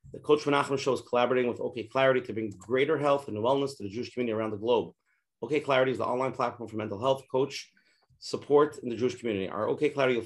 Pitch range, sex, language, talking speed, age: 120-145 Hz, male, English, 240 wpm, 30-49